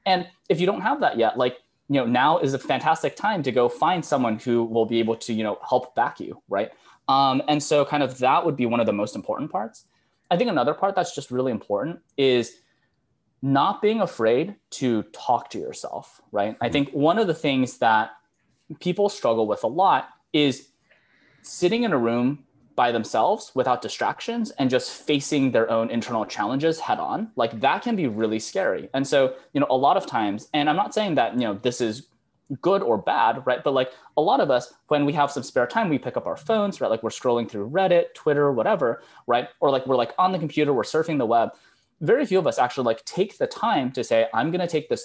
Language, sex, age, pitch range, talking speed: English, male, 20-39, 115-160 Hz, 230 wpm